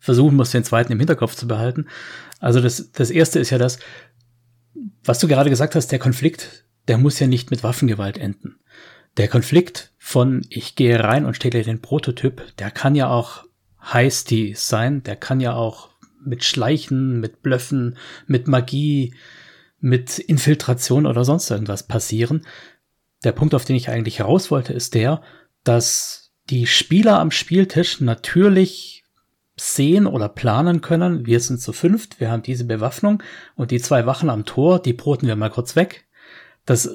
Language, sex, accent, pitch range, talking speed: German, male, German, 120-160 Hz, 165 wpm